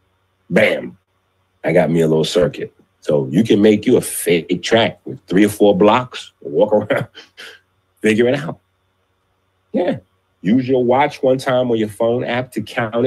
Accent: American